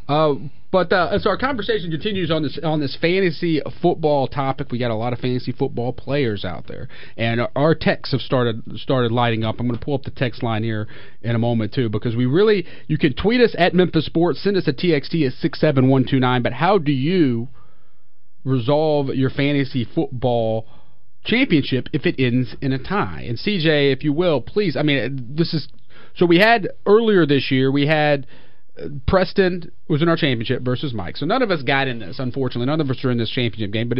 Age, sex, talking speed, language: 40-59, male, 220 wpm, English